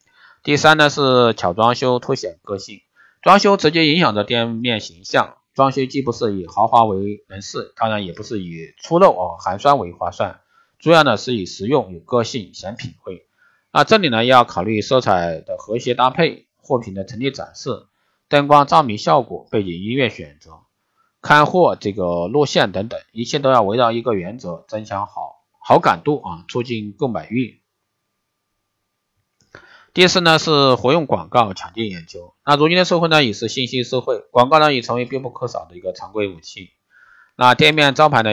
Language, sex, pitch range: Chinese, male, 100-135 Hz